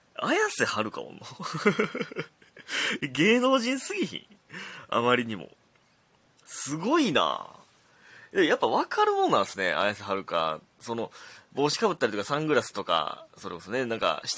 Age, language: 30-49, Japanese